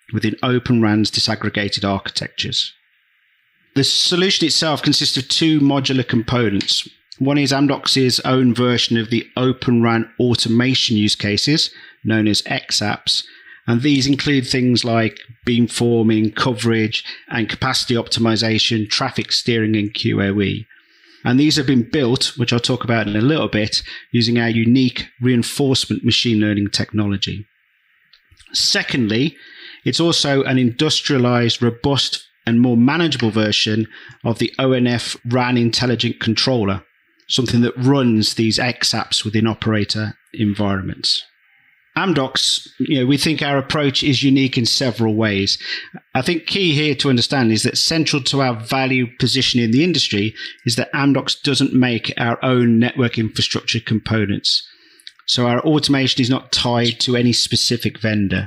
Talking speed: 135 wpm